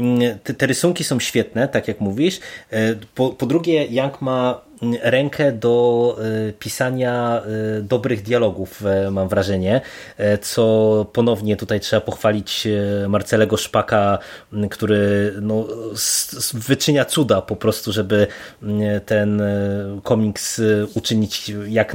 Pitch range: 110-130 Hz